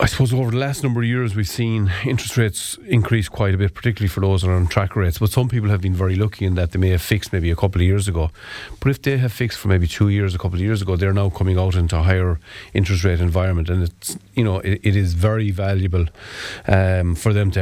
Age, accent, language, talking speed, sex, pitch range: 40-59, Irish, English, 260 wpm, male, 95-110 Hz